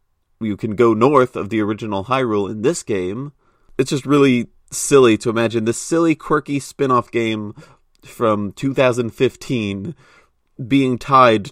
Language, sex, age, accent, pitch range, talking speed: English, male, 30-49, American, 100-125 Hz, 135 wpm